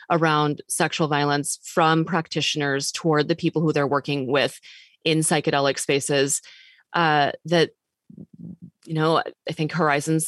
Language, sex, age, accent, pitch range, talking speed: English, female, 20-39, American, 140-170 Hz, 130 wpm